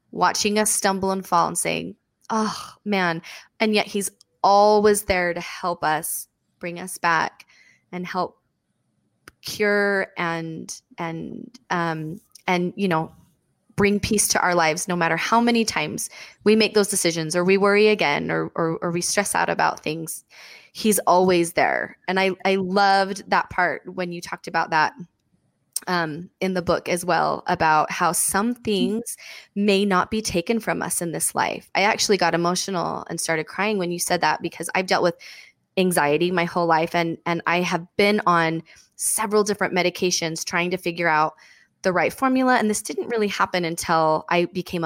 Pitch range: 170-205 Hz